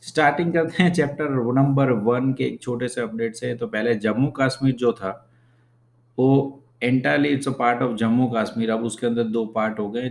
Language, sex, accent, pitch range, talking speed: English, male, Indian, 115-130 Hz, 195 wpm